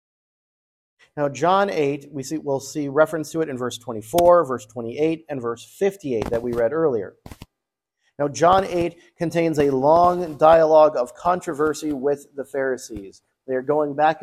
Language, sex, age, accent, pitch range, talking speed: English, male, 40-59, American, 135-170 Hz, 170 wpm